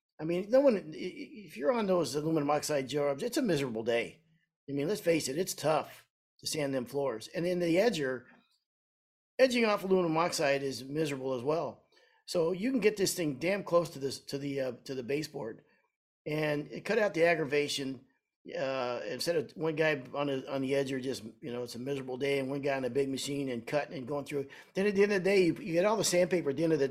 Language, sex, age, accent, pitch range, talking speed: English, male, 50-69, American, 140-185 Hz, 240 wpm